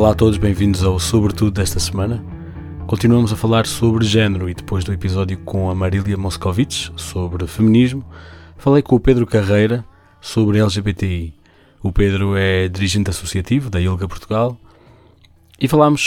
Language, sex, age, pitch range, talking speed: Portuguese, male, 20-39, 90-110 Hz, 150 wpm